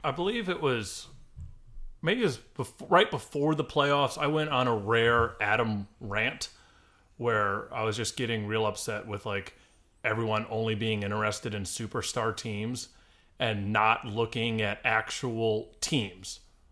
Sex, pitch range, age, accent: male, 105-140 Hz, 30-49, American